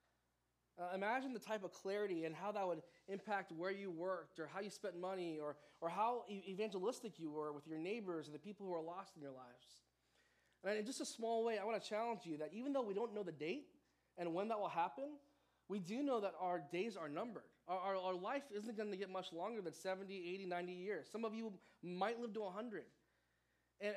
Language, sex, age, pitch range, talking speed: English, male, 20-39, 160-205 Hz, 230 wpm